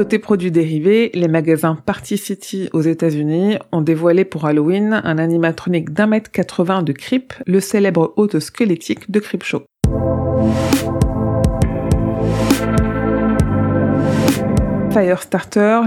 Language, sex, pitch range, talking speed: French, female, 165-205 Hz, 105 wpm